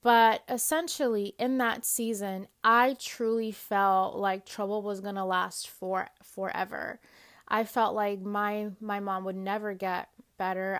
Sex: female